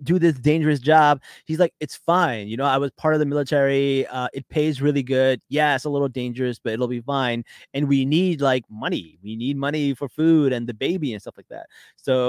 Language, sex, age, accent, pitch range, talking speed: English, male, 30-49, American, 130-160 Hz, 235 wpm